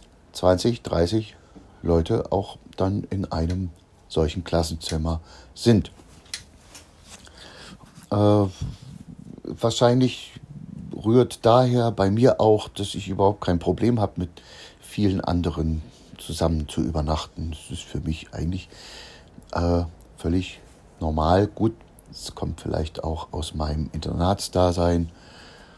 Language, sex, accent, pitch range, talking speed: German, male, German, 80-105 Hz, 105 wpm